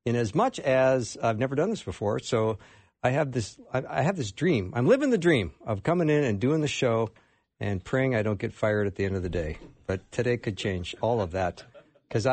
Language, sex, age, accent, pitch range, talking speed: English, male, 50-69, American, 110-160 Hz, 235 wpm